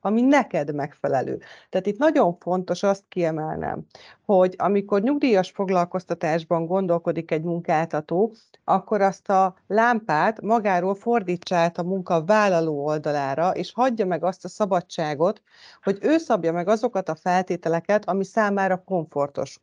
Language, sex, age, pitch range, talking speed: Hungarian, female, 40-59, 170-200 Hz, 130 wpm